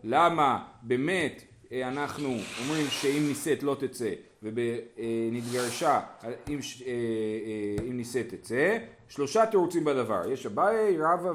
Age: 40-59